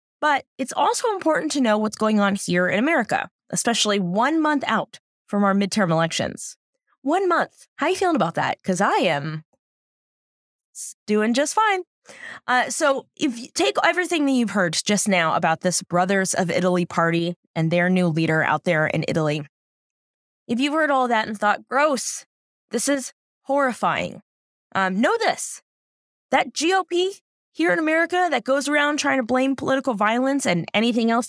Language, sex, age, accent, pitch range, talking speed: English, female, 20-39, American, 195-290 Hz, 170 wpm